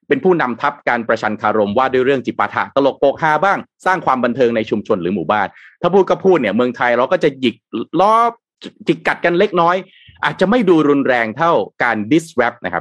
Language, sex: Thai, male